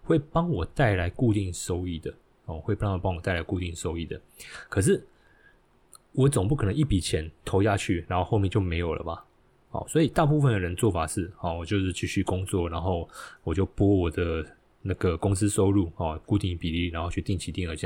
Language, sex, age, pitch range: Chinese, male, 20-39, 85-105 Hz